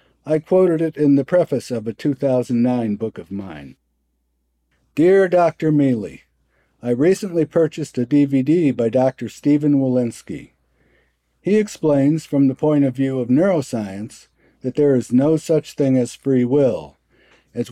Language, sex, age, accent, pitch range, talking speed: English, male, 50-69, American, 115-150 Hz, 145 wpm